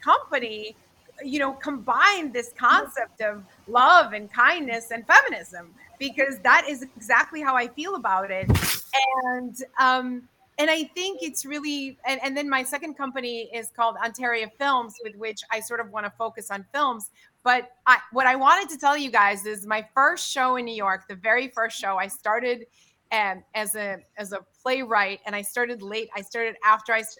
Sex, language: female, English